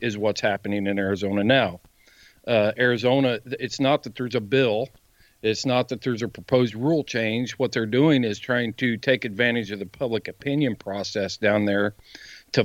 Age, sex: 50-69, male